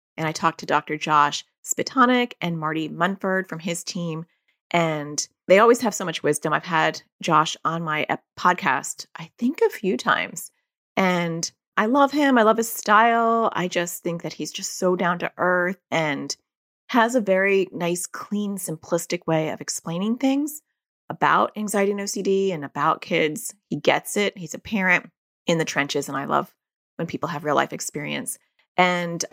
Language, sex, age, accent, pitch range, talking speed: English, female, 30-49, American, 160-210 Hz, 175 wpm